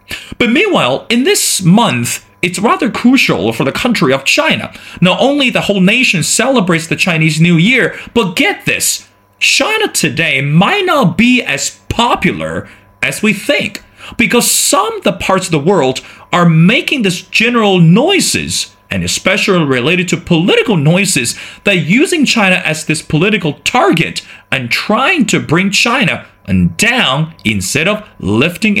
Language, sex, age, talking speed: English, male, 30-49, 150 wpm